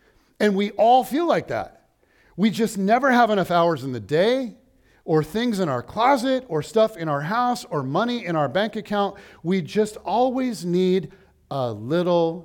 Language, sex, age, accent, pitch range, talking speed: English, male, 40-59, American, 140-210 Hz, 180 wpm